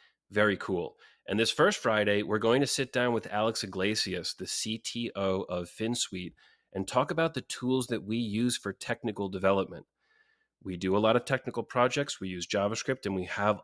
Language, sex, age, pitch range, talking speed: English, male, 30-49, 95-115 Hz, 185 wpm